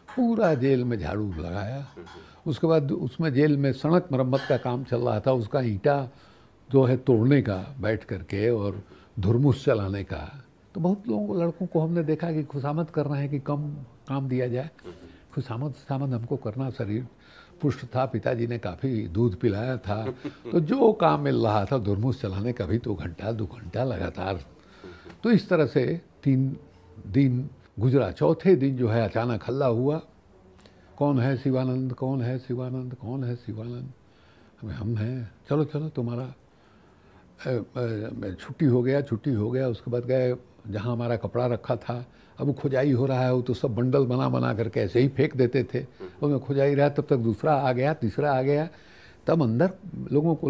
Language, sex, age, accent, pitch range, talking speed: Hindi, male, 60-79, native, 110-145 Hz, 175 wpm